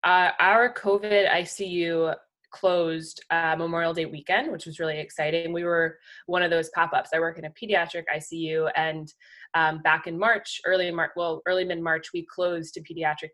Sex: female